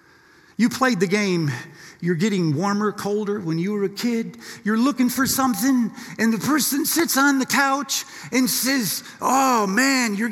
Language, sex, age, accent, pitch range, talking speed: English, male, 50-69, American, 235-320 Hz, 170 wpm